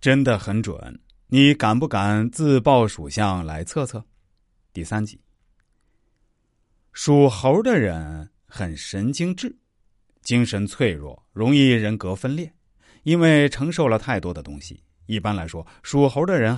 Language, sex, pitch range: Chinese, male, 95-135 Hz